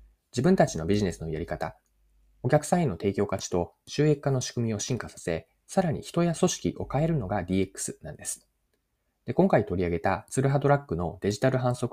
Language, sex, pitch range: Japanese, male, 90-145 Hz